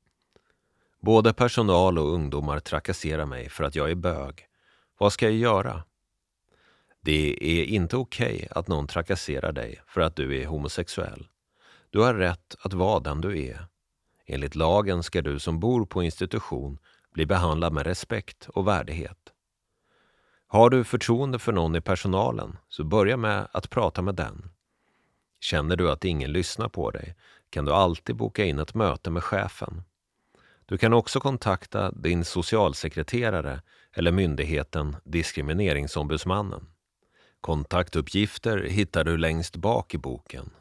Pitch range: 80-100 Hz